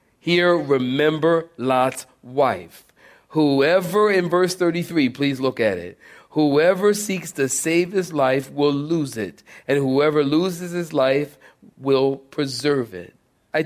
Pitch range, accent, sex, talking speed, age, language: 125-170 Hz, American, male, 130 wpm, 40-59, English